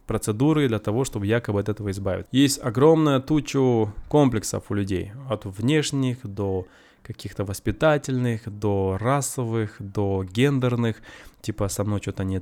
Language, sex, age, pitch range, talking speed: Russian, male, 20-39, 100-125 Hz, 135 wpm